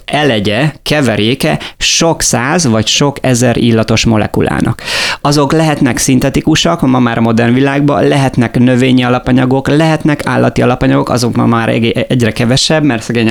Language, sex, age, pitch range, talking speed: Hungarian, male, 30-49, 110-135 Hz, 135 wpm